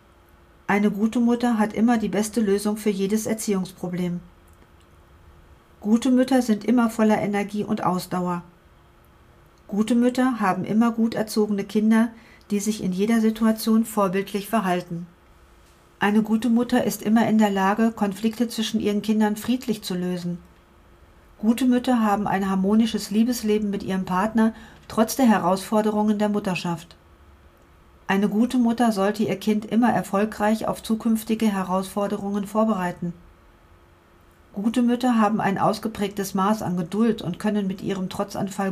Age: 50-69